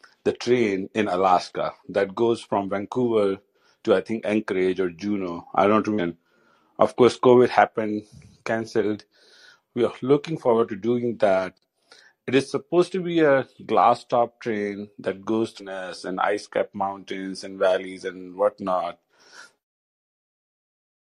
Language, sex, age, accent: English, male, 50-69, Indian